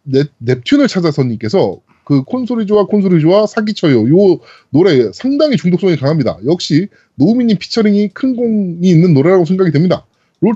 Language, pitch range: Korean, 150-210 Hz